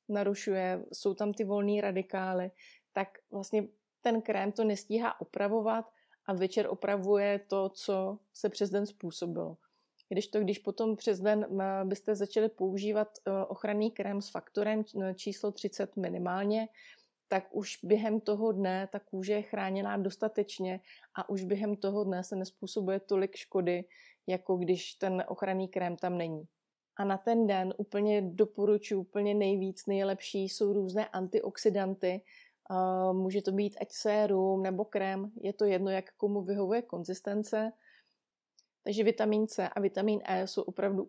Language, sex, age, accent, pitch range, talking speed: Czech, female, 30-49, native, 190-210 Hz, 145 wpm